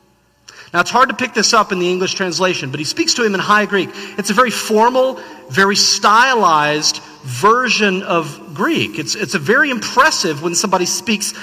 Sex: male